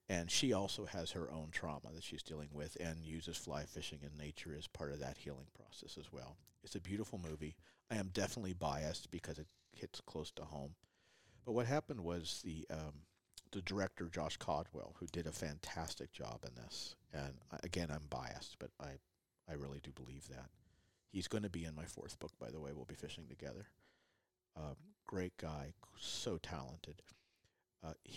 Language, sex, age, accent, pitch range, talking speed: English, male, 50-69, American, 75-95 Hz, 185 wpm